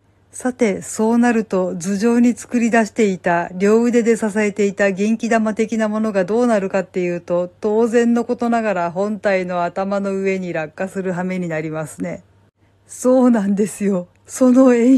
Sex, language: female, Japanese